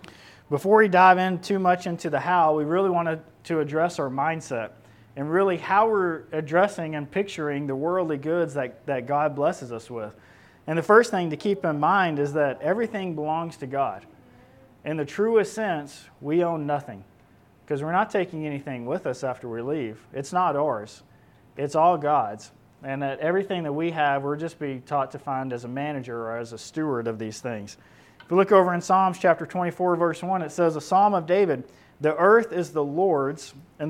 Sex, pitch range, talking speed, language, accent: male, 135-180 Hz, 200 wpm, English, American